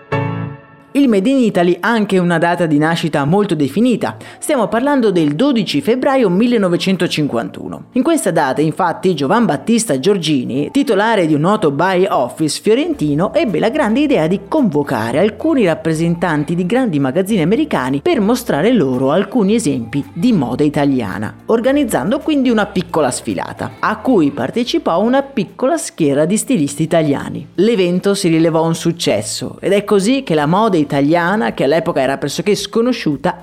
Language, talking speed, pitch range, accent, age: Italian, 150 wpm, 150-220 Hz, native, 30-49